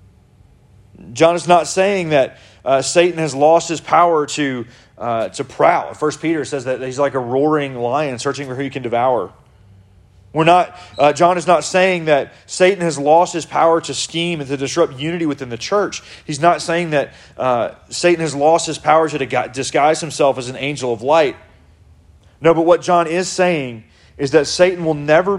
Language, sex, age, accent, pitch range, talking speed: English, male, 30-49, American, 120-160 Hz, 190 wpm